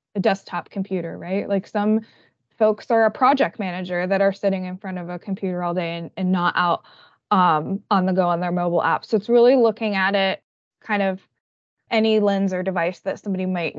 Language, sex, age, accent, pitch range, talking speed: English, female, 20-39, American, 195-235 Hz, 210 wpm